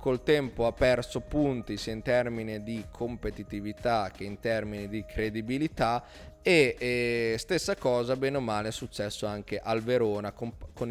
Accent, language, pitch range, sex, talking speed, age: native, Italian, 110-135 Hz, male, 160 wpm, 20-39